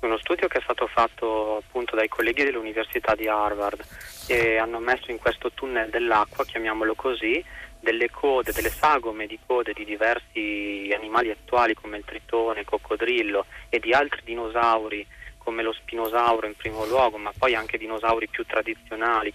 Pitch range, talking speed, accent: 105-115 Hz, 160 wpm, native